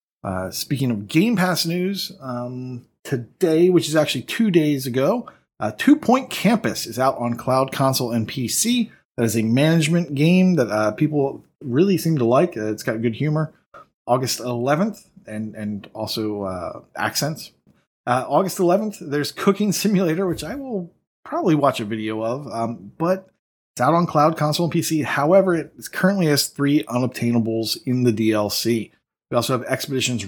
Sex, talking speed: male, 170 wpm